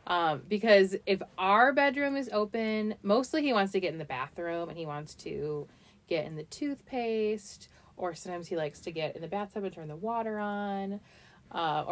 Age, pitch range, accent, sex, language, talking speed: 30-49, 160-205 Hz, American, female, English, 190 wpm